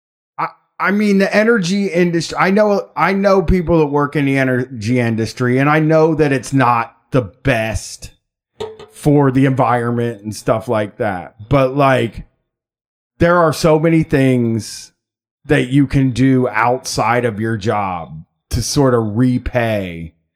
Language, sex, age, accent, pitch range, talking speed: English, male, 30-49, American, 120-155 Hz, 145 wpm